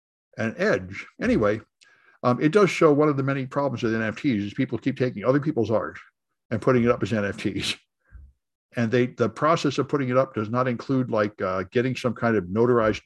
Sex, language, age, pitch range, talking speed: male, English, 60-79, 110-145 Hz, 205 wpm